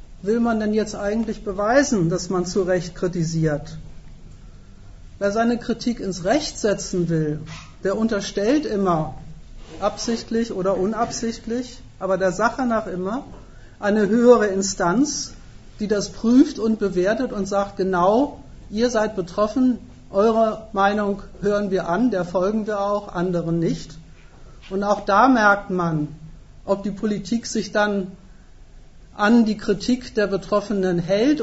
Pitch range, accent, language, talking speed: 175-215 Hz, German, German, 135 wpm